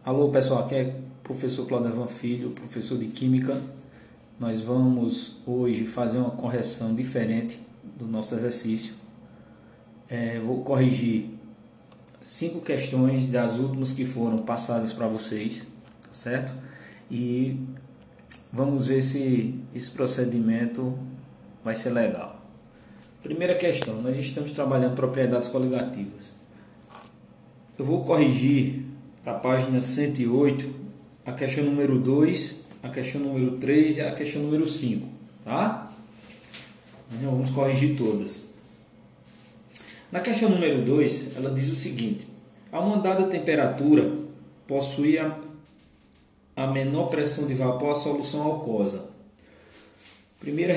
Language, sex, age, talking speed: Portuguese, male, 20-39, 110 wpm